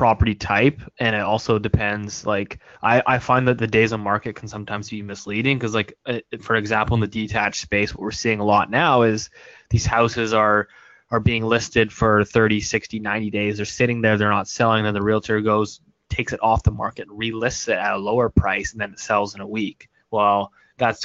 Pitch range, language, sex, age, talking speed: 105-115 Hz, English, male, 20-39, 215 wpm